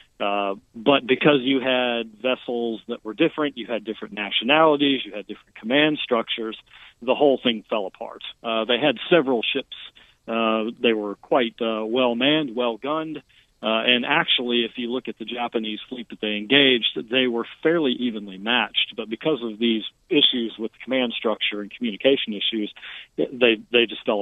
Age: 40-59